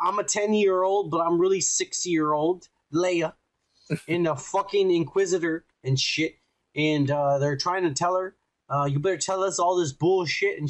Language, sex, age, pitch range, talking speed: English, male, 20-39, 145-190 Hz, 170 wpm